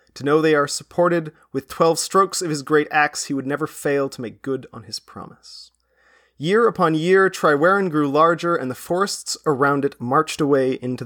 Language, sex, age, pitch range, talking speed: English, male, 30-49, 130-165 Hz, 195 wpm